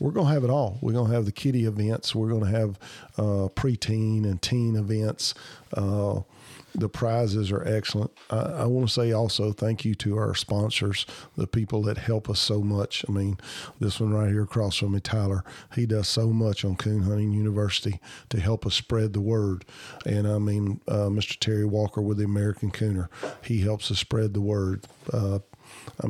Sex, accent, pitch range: male, American, 105-120 Hz